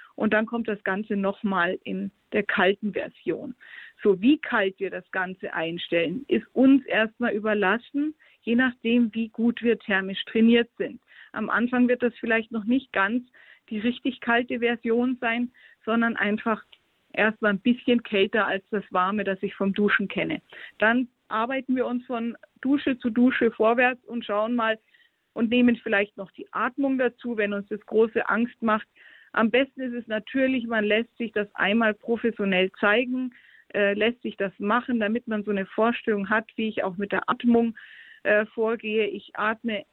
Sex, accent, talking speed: female, German, 170 wpm